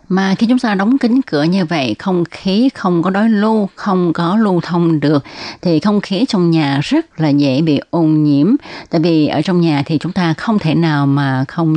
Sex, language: female, Vietnamese